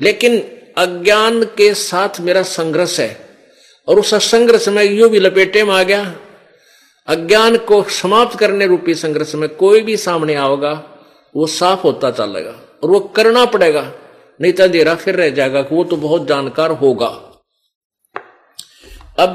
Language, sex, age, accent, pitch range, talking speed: Hindi, male, 50-69, native, 150-200 Hz, 145 wpm